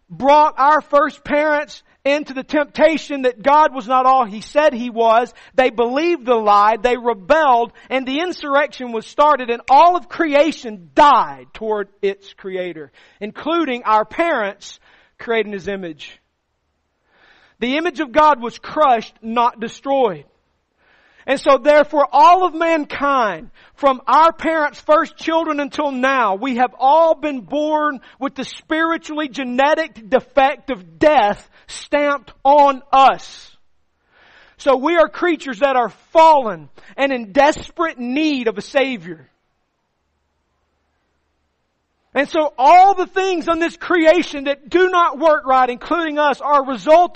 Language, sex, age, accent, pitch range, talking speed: English, male, 40-59, American, 230-305 Hz, 140 wpm